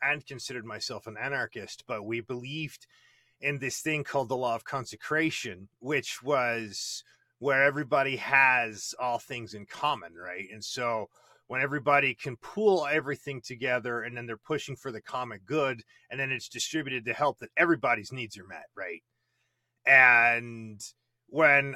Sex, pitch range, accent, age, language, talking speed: male, 120-155 Hz, American, 30-49, English, 155 wpm